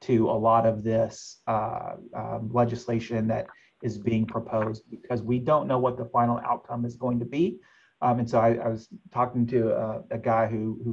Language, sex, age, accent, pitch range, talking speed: English, male, 30-49, American, 115-125 Hz, 205 wpm